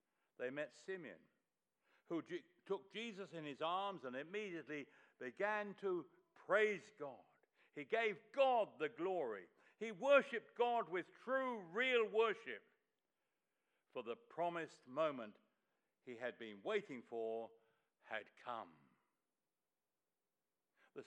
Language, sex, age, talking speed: English, male, 60-79, 110 wpm